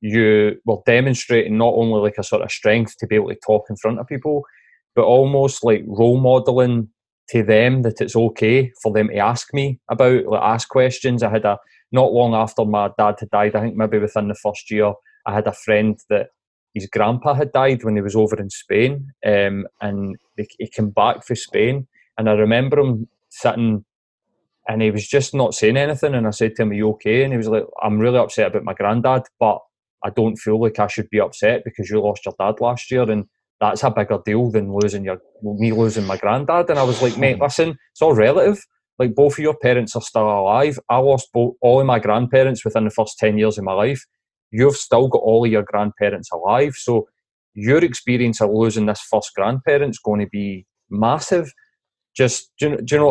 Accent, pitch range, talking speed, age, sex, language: British, 105-130 Hz, 215 wpm, 20-39, male, English